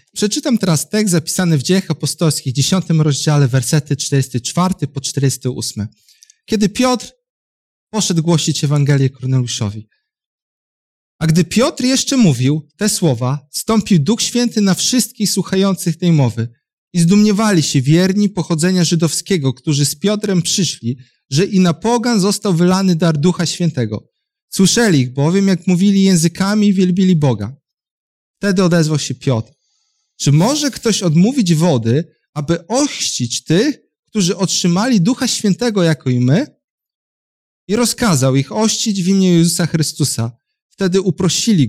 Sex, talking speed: male, 130 wpm